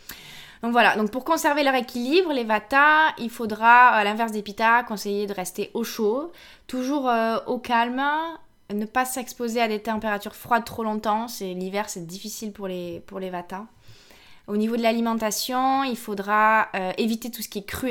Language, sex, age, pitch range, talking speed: French, female, 20-39, 180-230 Hz, 185 wpm